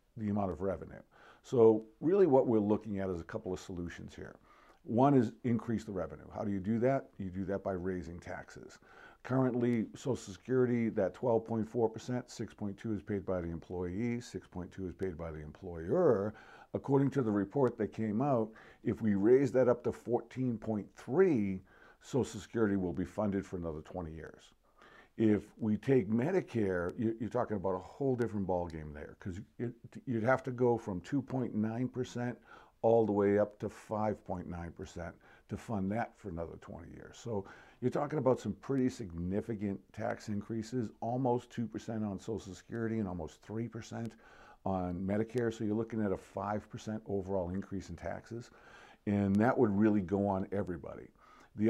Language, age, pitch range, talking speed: English, 50-69, 95-120 Hz, 165 wpm